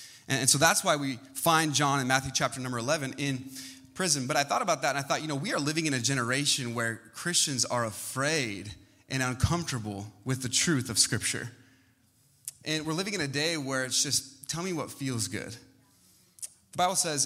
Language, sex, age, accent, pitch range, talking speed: English, male, 20-39, American, 125-160 Hz, 200 wpm